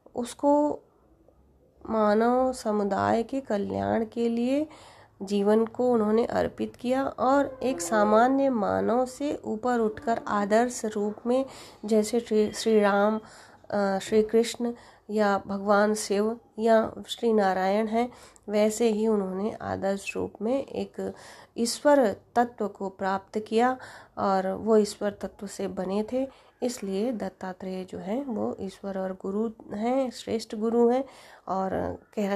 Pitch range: 195-230 Hz